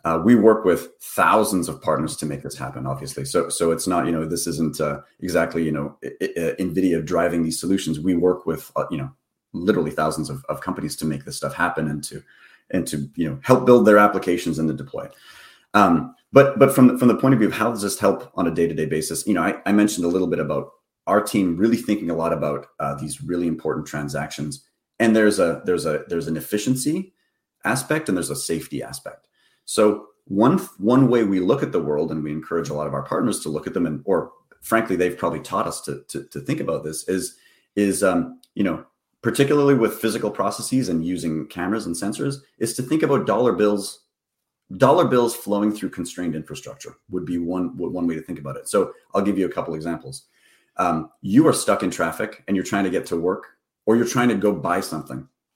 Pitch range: 80-115 Hz